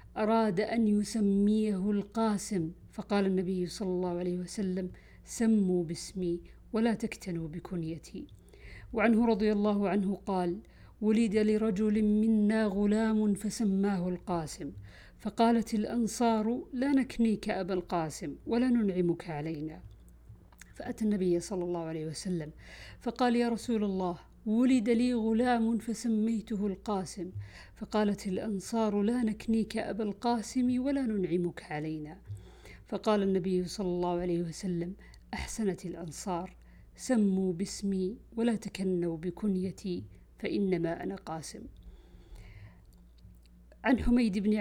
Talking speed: 105 wpm